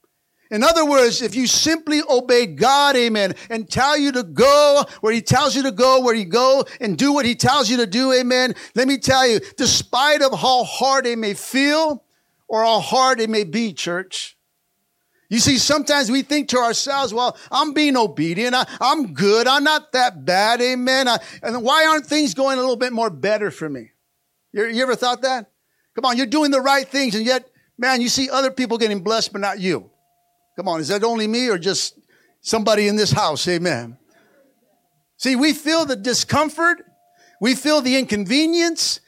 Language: English